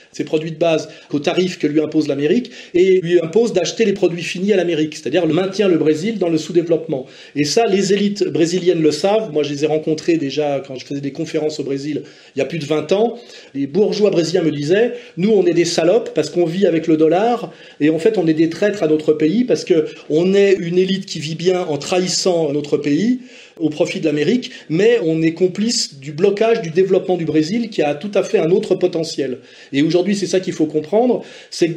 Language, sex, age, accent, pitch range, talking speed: French, male, 30-49, French, 155-200 Hz, 235 wpm